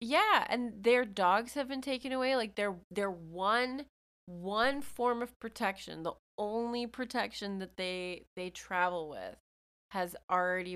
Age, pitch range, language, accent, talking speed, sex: 20-39, 165-205 Hz, English, American, 145 wpm, female